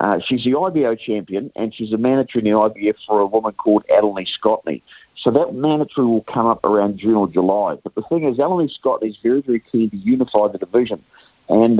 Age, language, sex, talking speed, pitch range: 50-69, English, male, 220 wpm, 100-125 Hz